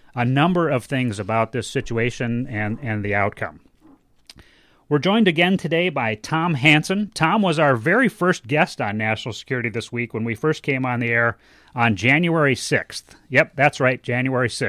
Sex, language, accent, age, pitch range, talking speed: male, English, American, 30-49, 120-160 Hz, 175 wpm